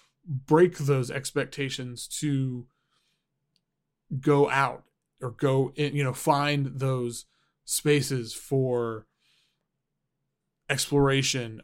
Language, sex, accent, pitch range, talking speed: English, male, American, 135-165 Hz, 80 wpm